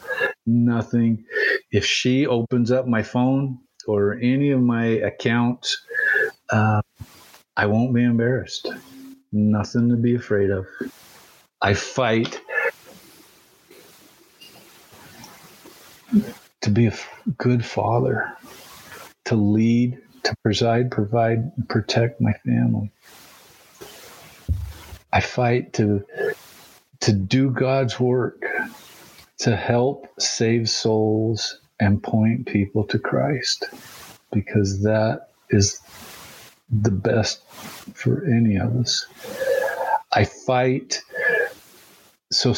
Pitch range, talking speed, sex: 105-125 Hz, 95 wpm, male